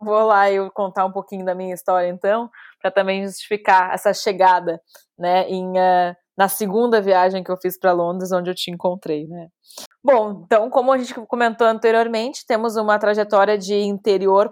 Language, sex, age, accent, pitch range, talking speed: Portuguese, female, 20-39, Brazilian, 185-225 Hz, 180 wpm